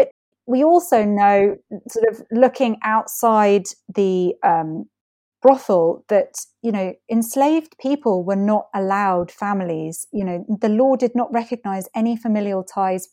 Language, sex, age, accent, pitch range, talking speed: English, female, 30-49, British, 185-245 Hz, 135 wpm